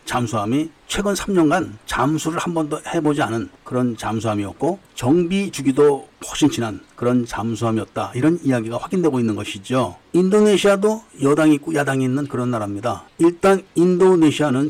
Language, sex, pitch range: Korean, male, 125-170 Hz